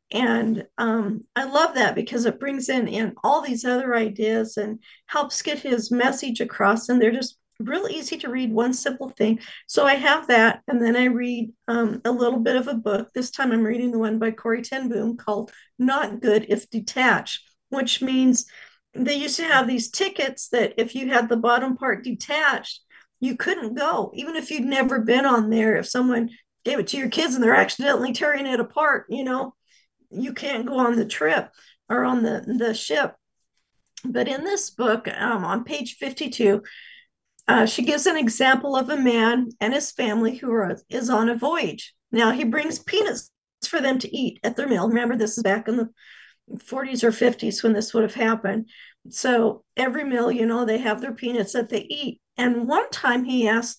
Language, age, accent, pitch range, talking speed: English, 50-69, American, 225-265 Hz, 200 wpm